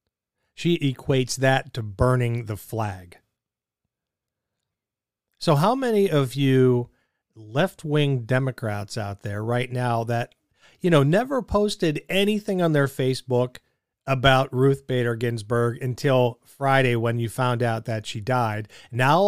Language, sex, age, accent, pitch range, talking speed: English, male, 40-59, American, 115-145 Hz, 130 wpm